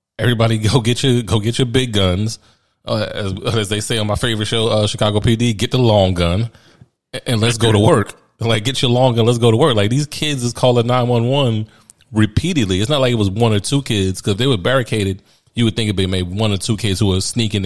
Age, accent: 30-49, American